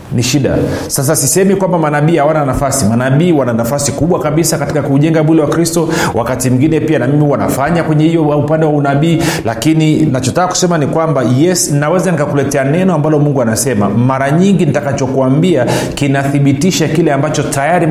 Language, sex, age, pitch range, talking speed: Swahili, male, 40-59, 125-155 Hz, 160 wpm